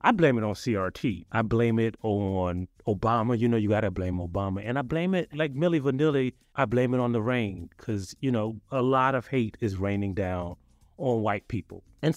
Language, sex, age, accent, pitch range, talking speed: English, male, 30-49, American, 100-145 Hz, 215 wpm